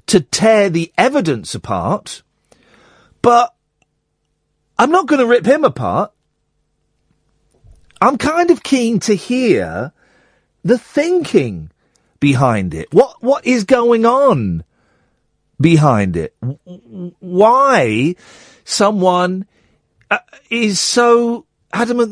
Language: English